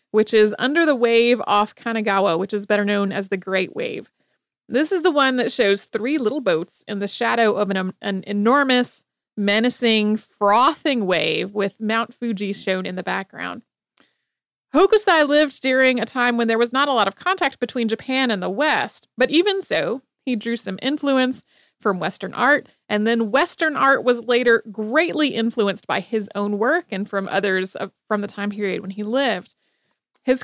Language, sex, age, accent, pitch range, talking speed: English, female, 30-49, American, 205-265 Hz, 180 wpm